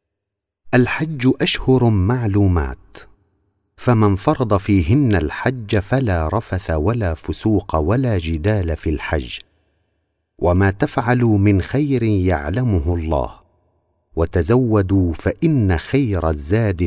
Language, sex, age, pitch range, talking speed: Arabic, male, 50-69, 85-120 Hz, 90 wpm